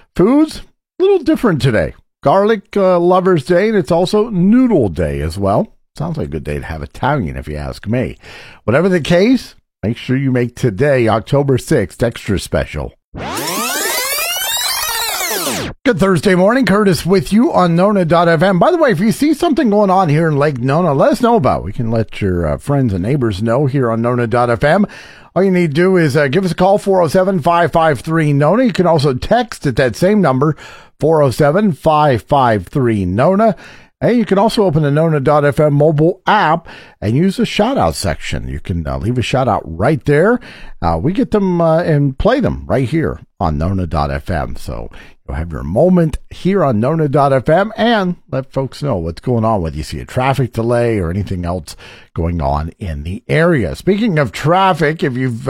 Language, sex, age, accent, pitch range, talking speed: English, male, 50-69, American, 115-185 Hz, 180 wpm